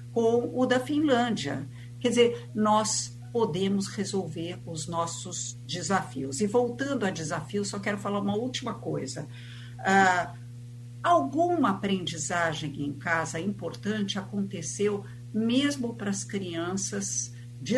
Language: Portuguese